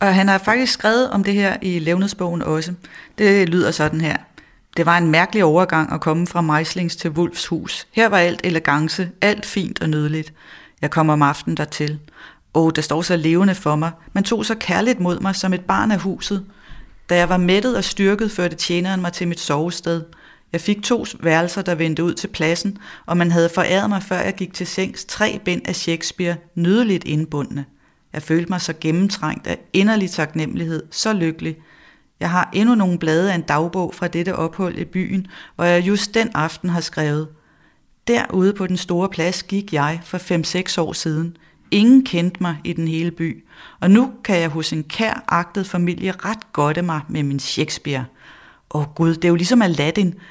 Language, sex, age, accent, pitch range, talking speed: Danish, female, 30-49, native, 160-195 Hz, 195 wpm